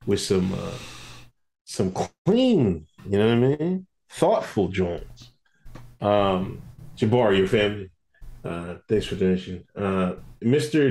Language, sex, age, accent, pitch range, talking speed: English, male, 40-59, American, 105-130 Hz, 125 wpm